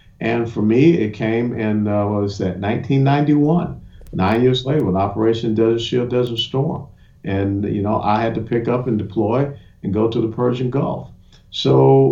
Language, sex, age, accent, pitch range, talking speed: English, male, 50-69, American, 105-130 Hz, 185 wpm